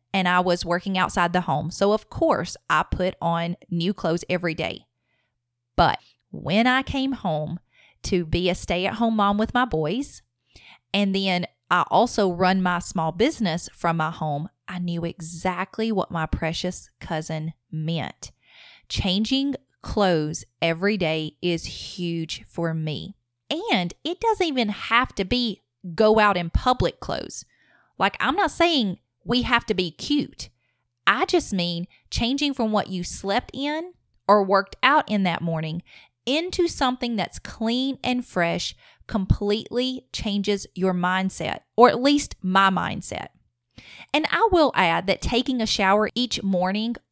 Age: 30-49